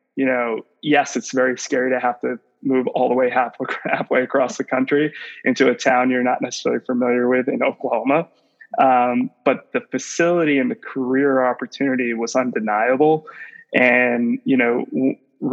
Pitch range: 125-135 Hz